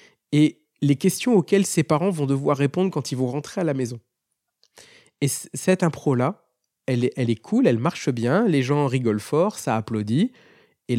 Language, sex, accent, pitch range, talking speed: French, male, French, 125-185 Hz, 185 wpm